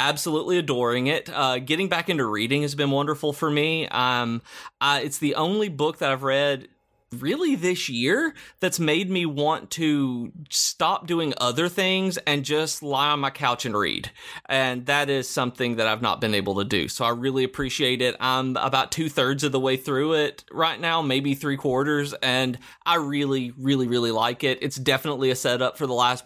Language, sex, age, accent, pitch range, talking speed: English, male, 30-49, American, 125-145 Hz, 195 wpm